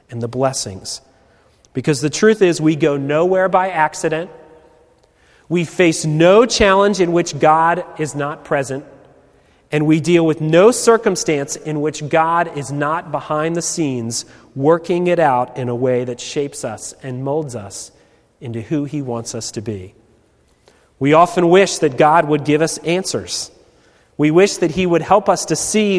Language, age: English, 30-49